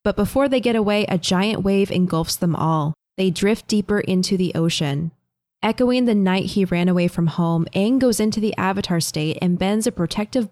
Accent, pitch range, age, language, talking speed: American, 170-210 Hz, 20-39, English, 200 wpm